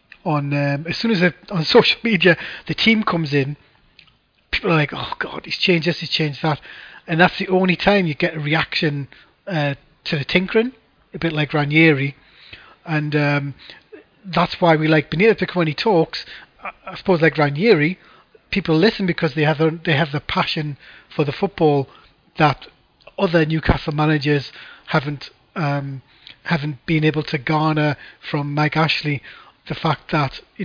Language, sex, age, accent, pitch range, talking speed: English, male, 30-49, British, 150-175 Hz, 170 wpm